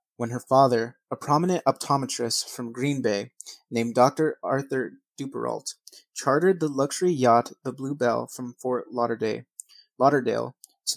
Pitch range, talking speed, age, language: 125-145 Hz, 130 wpm, 30-49, English